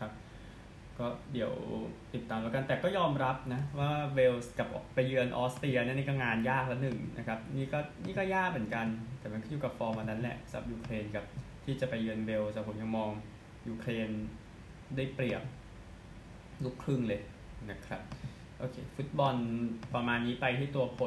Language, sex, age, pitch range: Thai, male, 20-39, 110-135 Hz